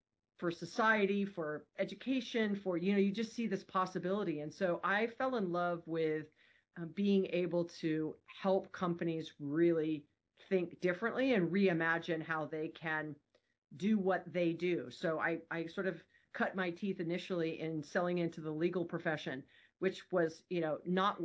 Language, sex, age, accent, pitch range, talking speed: English, female, 40-59, American, 165-190 Hz, 160 wpm